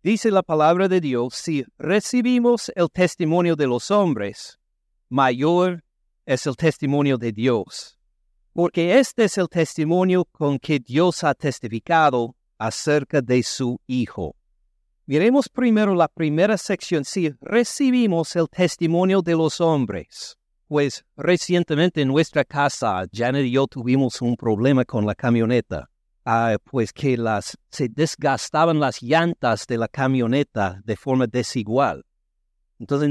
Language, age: Spanish, 60-79